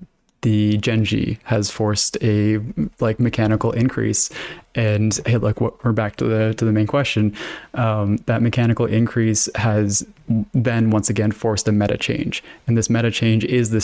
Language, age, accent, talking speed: English, 20-39, American, 170 wpm